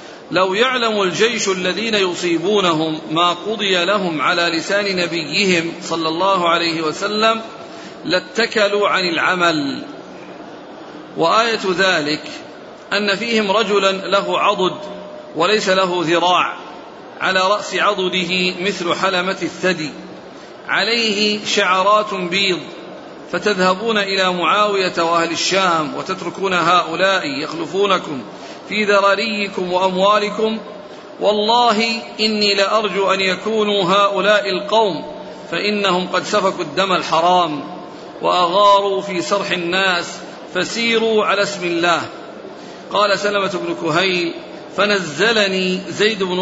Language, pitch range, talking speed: Arabic, 180-205 Hz, 95 wpm